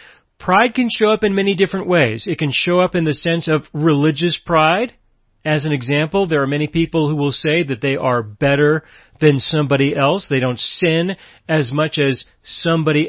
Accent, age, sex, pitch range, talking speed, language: American, 40-59, male, 145-210 Hz, 195 wpm, English